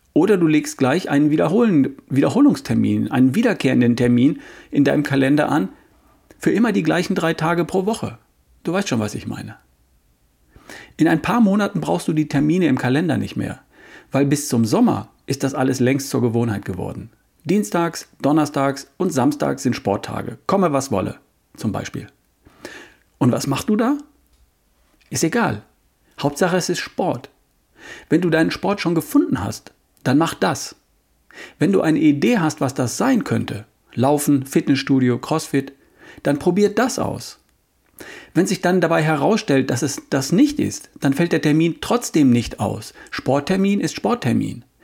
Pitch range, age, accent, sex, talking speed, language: 130-180 Hz, 40-59, German, male, 160 wpm, German